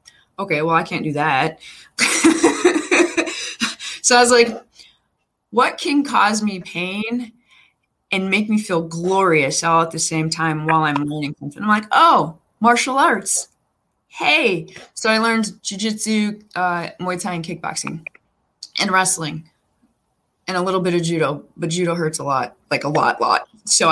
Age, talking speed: 20-39, 155 wpm